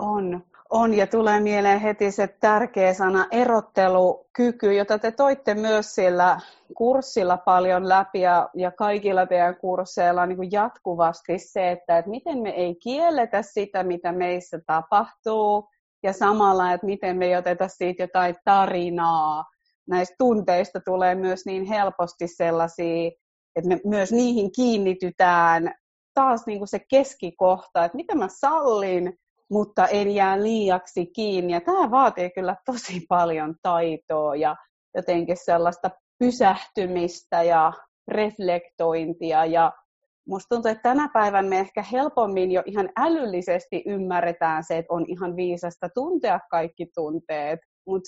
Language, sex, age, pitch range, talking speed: Finnish, female, 30-49, 175-210 Hz, 135 wpm